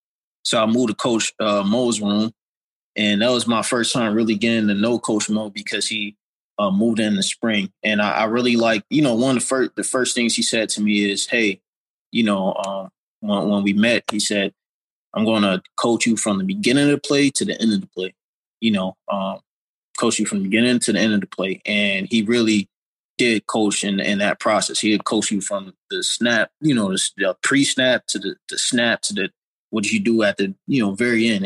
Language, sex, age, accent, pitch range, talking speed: English, male, 20-39, American, 105-120 Hz, 235 wpm